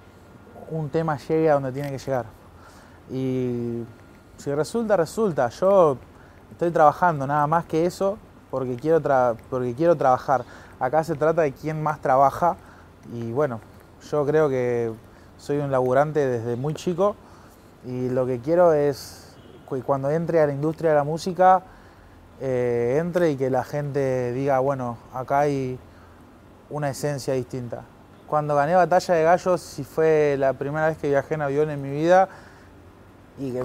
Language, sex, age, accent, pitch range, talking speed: Spanish, male, 20-39, Argentinian, 115-155 Hz, 155 wpm